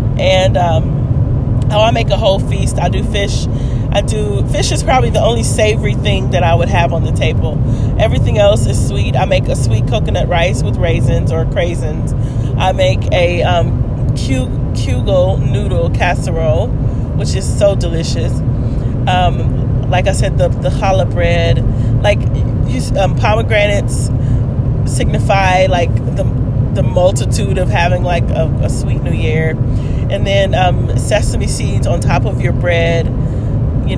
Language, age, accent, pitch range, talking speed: English, 30-49, American, 115-130 Hz, 155 wpm